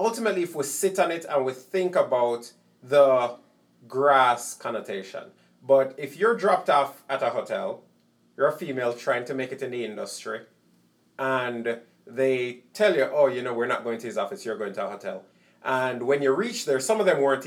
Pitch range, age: 130-190 Hz, 30-49